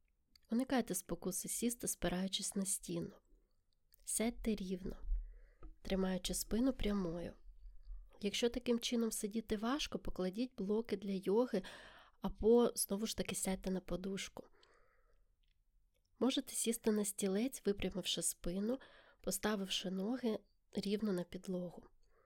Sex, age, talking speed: female, 20-39, 100 wpm